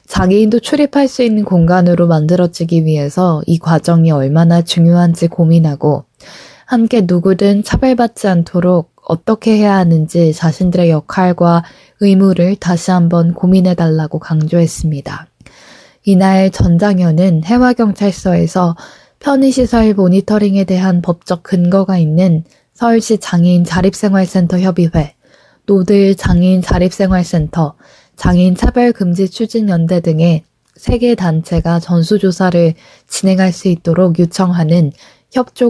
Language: Korean